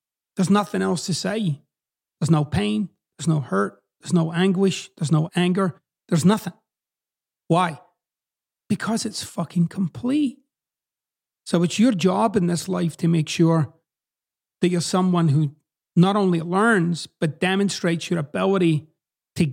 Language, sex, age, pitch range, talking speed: English, male, 30-49, 165-205 Hz, 140 wpm